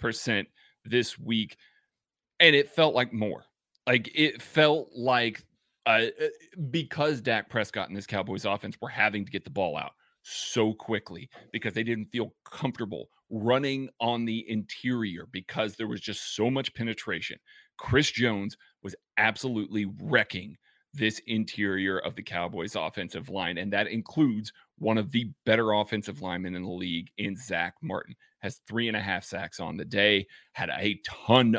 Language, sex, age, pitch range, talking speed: English, male, 30-49, 105-120 Hz, 160 wpm